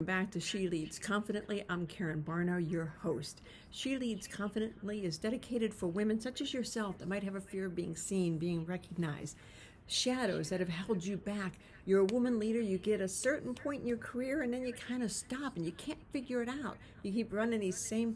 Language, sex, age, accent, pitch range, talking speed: English, female, 60-79, American, 165-220 Hz, 215 wpm